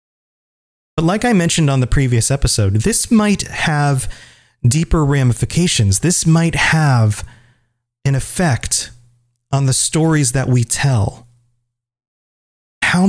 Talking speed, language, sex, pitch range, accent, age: 115 wpm, English, male, 115-140 Hz, American, 30-49